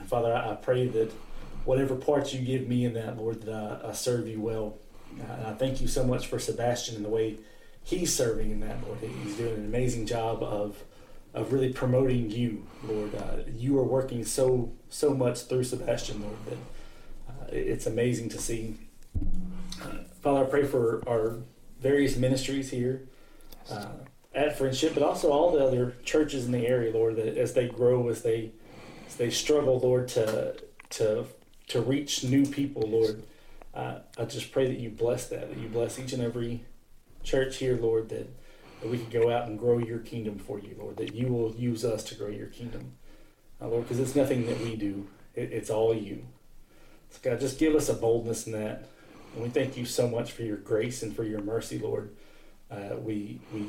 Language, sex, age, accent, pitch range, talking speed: English, male, 30-49, American, 110-130 Hz, 200 wpm